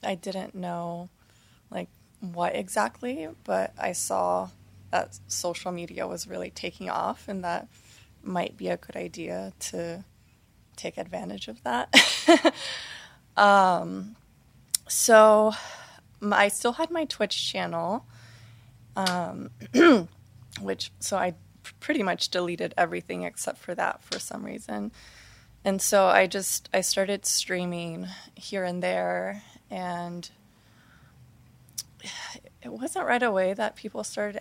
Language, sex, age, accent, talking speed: English, female, 20-39, American, 120 wpm